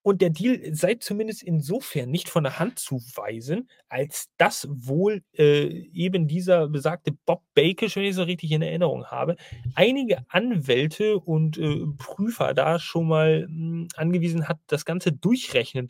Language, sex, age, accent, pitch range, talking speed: German, male, 30-49, German, 140-185 Hz, 155 wpm